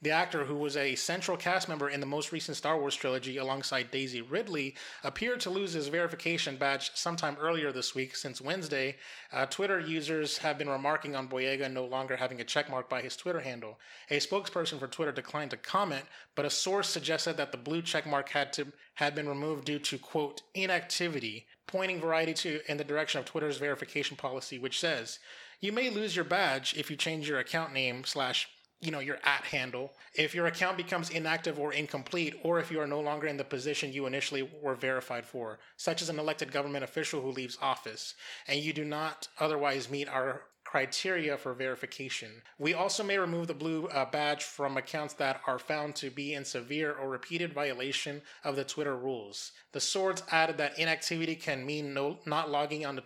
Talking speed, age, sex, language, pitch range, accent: 200 wpm, 30-49, male, English, 135-160 Hz, American